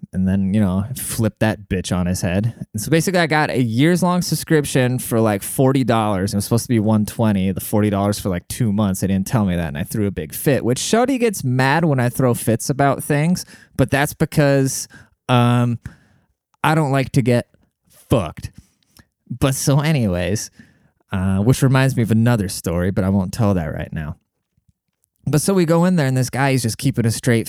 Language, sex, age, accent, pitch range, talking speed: English, male, 20-39, American, 105-140 Hz, 205 wpm